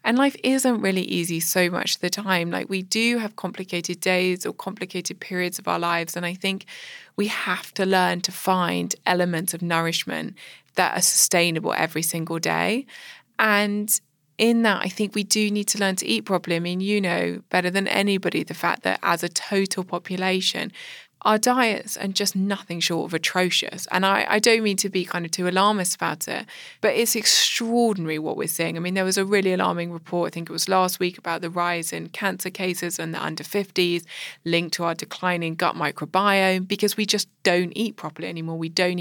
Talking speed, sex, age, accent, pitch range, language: 205 wpm, female, 20-39, British, 170-205 Hz, English